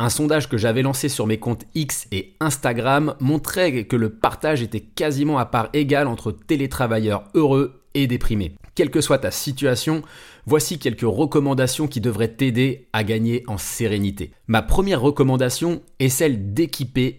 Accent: French